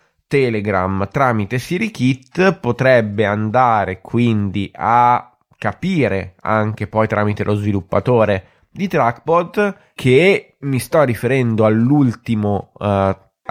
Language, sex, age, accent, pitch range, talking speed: Italian, male, 20-39, native, 110-135 Hz, 95 wpm